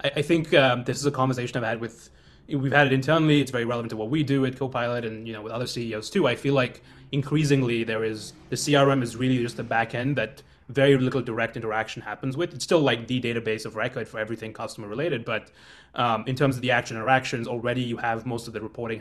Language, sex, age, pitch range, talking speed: English, male, 20-39, 110-135 Hz, 240 wpm